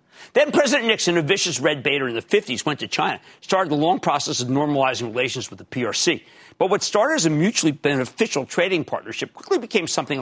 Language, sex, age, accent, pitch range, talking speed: English, male, 50-69, American, 130-175 Hz, 205 wpm